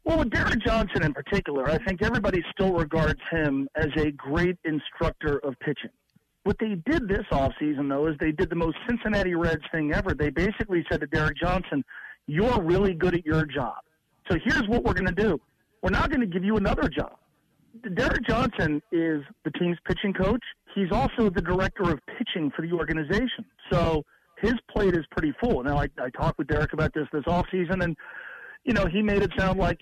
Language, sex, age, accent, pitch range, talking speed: English, male, 50-69, American, 150-195 Hz, 205 wpm